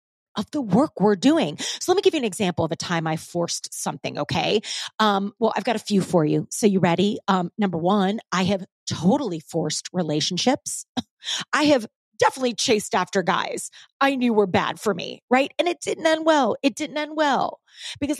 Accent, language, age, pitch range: American, English, 30-49, 185-260 Hz